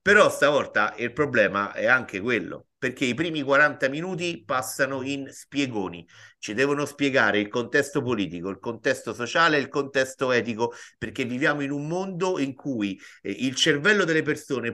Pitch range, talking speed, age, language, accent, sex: 115-160 Hz, 155 wpm, 50-69, Italian, native, male